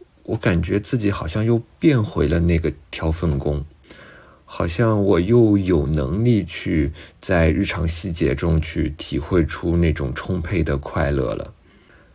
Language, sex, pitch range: Chinese, male, 80-95 Hz